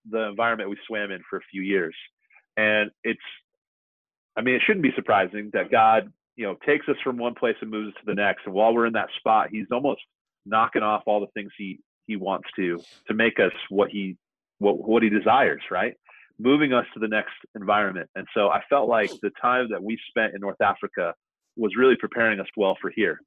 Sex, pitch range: male, 100-120 Hz